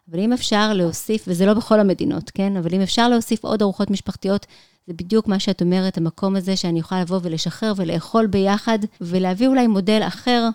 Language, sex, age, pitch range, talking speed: Hebrew, female, 30-49, 180-215 Hz, 190 wpm